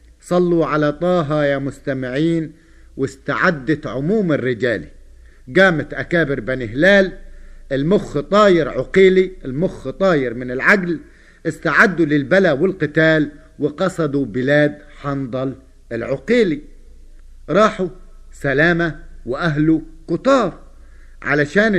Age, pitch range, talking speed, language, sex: 50-69, 130-170 Hz, 85 wpm, Arabic, male